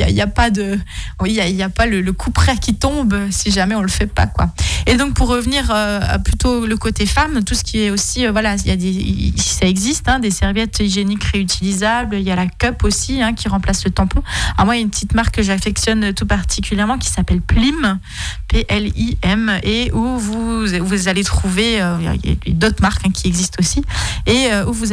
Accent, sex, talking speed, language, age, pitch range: French, female, 250 wpm, French, 20-39, 165-210 Hz